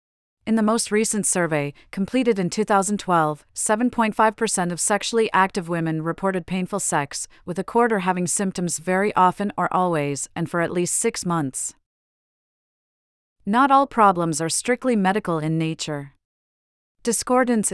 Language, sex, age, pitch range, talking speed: English, female, 40-59, 160-200 Hz, 135 wpm